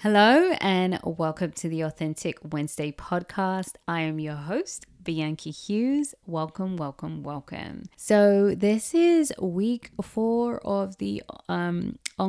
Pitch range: 160-200 Hz